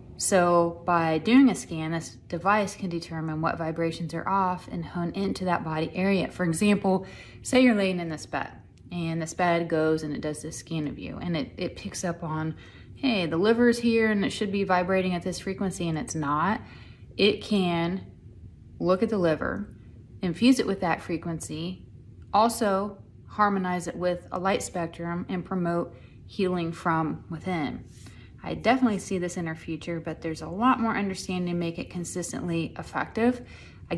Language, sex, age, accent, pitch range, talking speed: English, female, 30-49, American, 165-200 Hz, 180 wpm